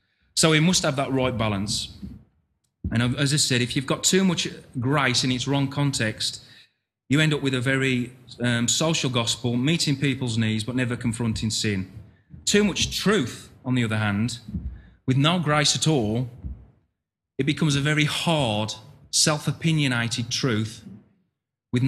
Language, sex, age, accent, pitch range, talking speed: English, male, 30-49, British, 110-140 Hz, 155 wpm